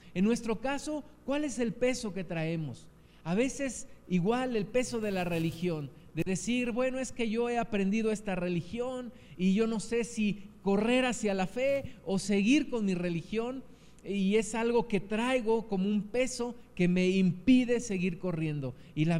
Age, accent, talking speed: 50-69, Mexican, 175 wpm